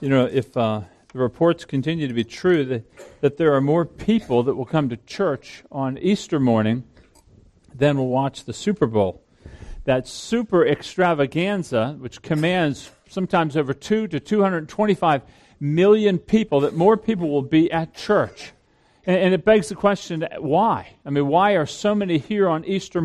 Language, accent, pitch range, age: English, American, 135-195 Hz, 50-69